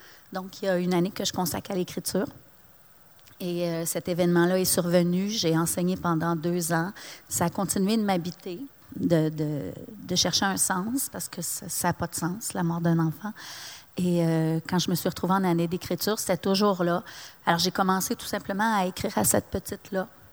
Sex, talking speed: female, 200 wpm